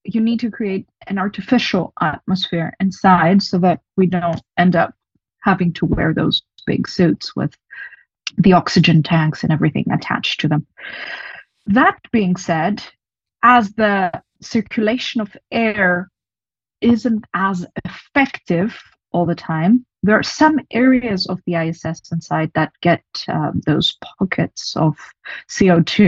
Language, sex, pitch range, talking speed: English, female, 175-220 Hz, 135 wpm